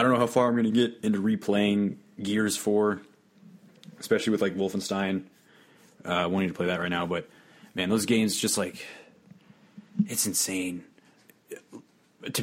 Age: 20-39